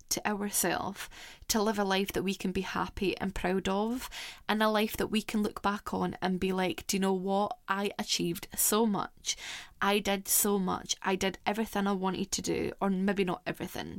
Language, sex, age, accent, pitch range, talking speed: English, female, 10-29, British, 190-215 Hz, 210 wpm